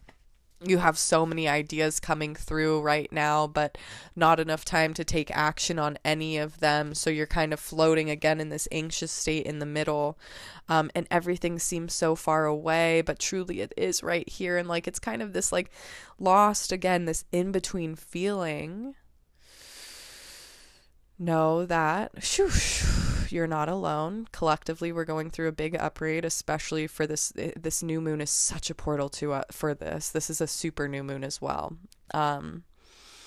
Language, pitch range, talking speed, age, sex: English, 150-170 Hz, 170 wpm, 20-39, female